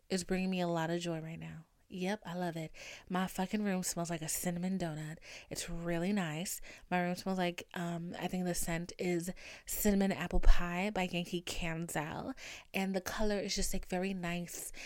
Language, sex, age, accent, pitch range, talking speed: English, female, 20-39, American, 175-225 Hz, 195 wpm